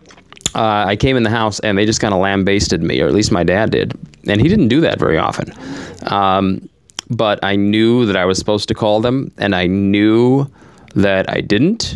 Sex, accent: male, American